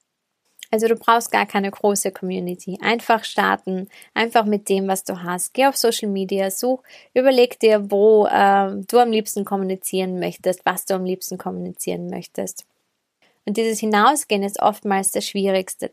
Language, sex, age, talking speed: German, female, 20-39, 160 wpm